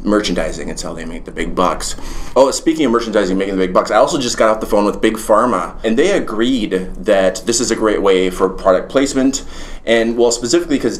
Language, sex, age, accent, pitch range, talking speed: English, male, 30-49, American, 100-135 Hz, 230 wpm